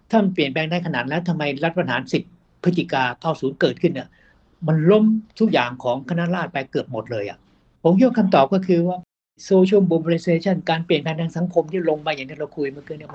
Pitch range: 160-195 Hz